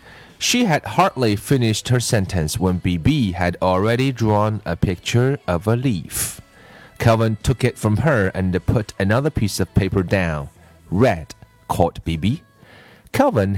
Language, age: Chinese, 30-49